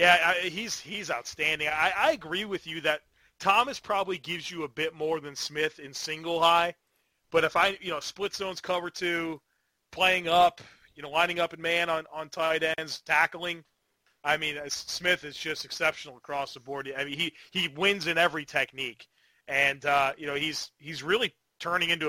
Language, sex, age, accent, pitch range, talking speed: English, male, 30-49, American, 140-170 Hz, 195 wpm